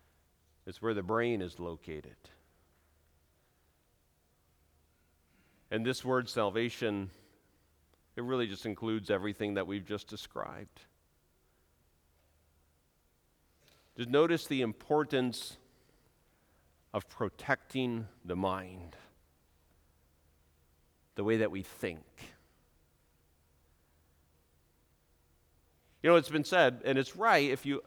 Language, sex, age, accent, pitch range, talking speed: English, male, 50-69, American, 80-115 Hz, 90 wpm